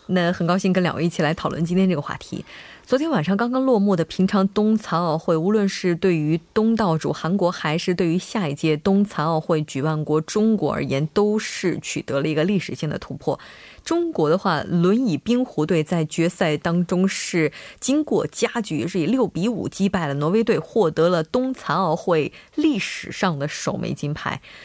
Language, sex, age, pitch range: Korean, female, 20-39, 160-215 Hz